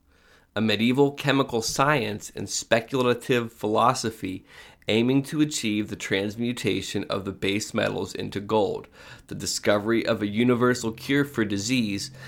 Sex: male